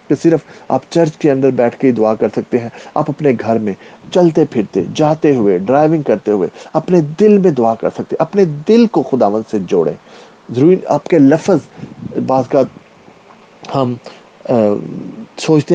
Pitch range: 125-170 Hz